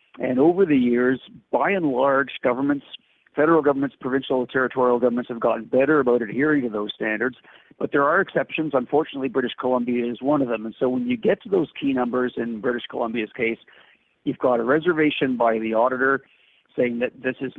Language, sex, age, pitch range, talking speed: English, male, 50-69, 120-140 Hz, 195 wpm